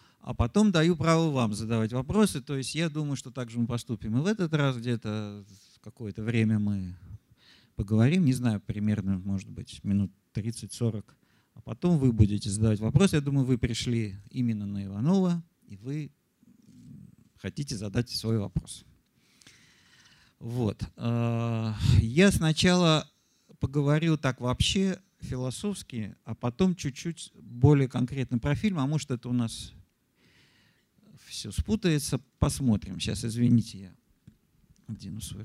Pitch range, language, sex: 110-145 Hz, Russian, male